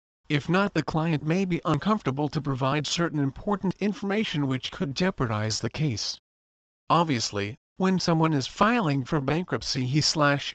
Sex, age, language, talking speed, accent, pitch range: male, 50-69, English, 150 wpm, American, 135-170 Hz